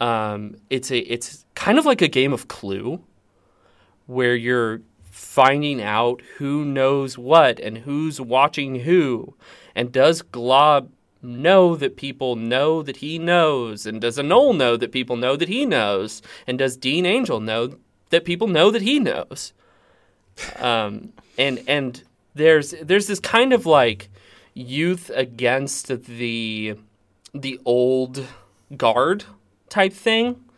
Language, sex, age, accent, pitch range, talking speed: English, male, 30-49, American, 110-145 Hz, 135 wpm